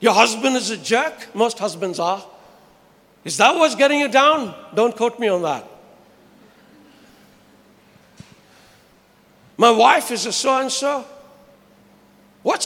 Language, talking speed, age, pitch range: English, 120 wpm, 60-79, 225-325 Hz